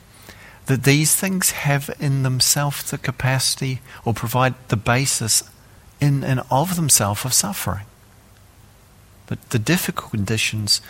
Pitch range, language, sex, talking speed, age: 100-130 Hz, English, male, 120 wpm, 50-69